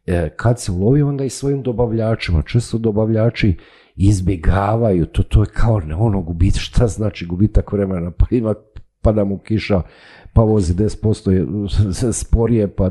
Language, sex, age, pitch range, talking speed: Croatian, male, 50-69, 80-105 Hz, 140 wpm